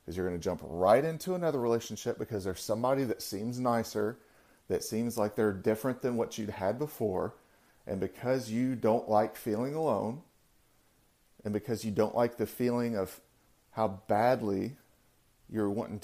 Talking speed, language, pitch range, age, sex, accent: 160 wpm, English, 100-120 Hz, 40-59, male, American